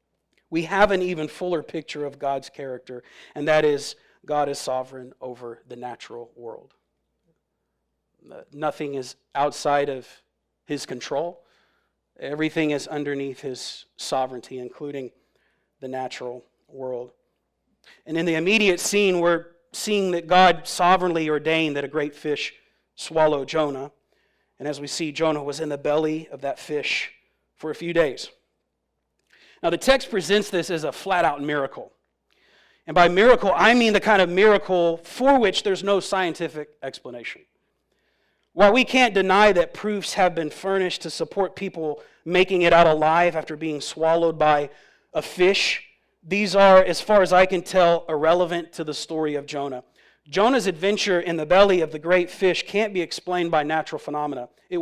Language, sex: English, male